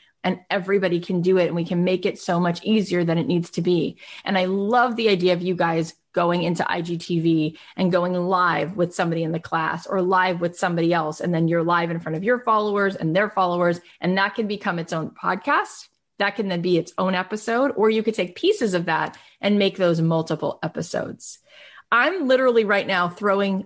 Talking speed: 215 wpm